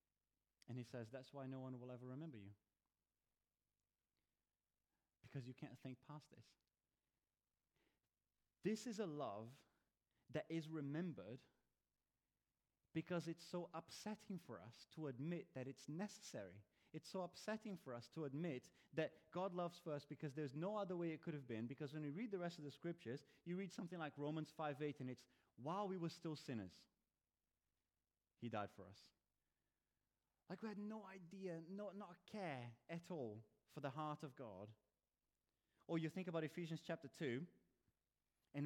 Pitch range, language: 120-170 Hz, English